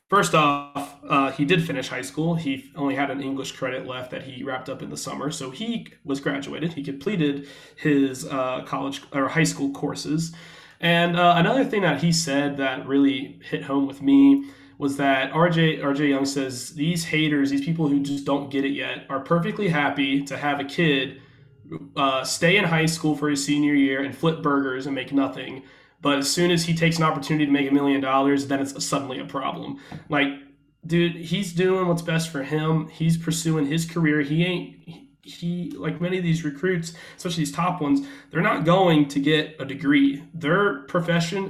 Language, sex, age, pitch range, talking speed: English, male, 20-39, 140-165 Hz, 200 wpm